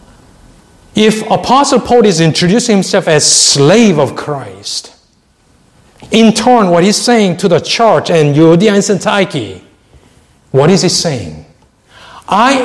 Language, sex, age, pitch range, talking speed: English, male, 60-79, 150-220 Hz, 130 wpm